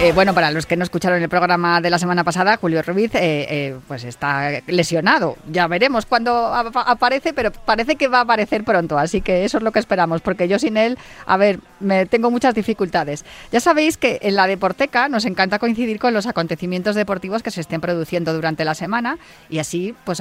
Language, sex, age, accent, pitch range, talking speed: Spanish, female, 30-49, Spanish, 165-205 Hz, 210 wpm